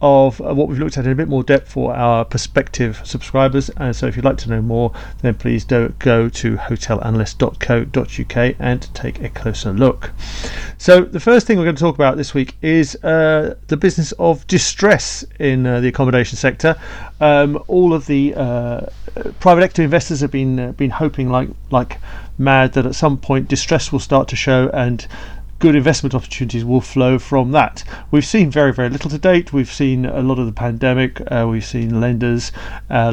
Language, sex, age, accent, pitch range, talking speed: English, male, 40-59, British, 120-145 Hz, 195 wpm